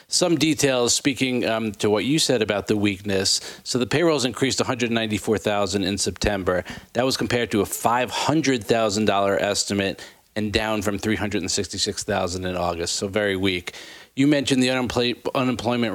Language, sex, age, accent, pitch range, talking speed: English, male, 40-59, American, 100-125 Hz, 145 wpm